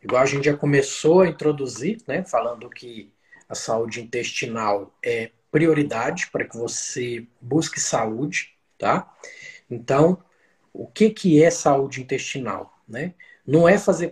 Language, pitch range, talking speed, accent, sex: Portuguese, 130-180 Hz, 135 wpm, Brazilian, male